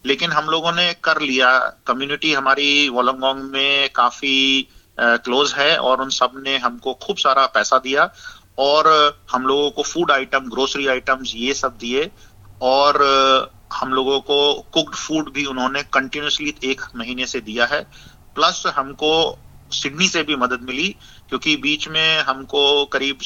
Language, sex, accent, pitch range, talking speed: Hindi, male, native, 125-145 Hz, 150 wpm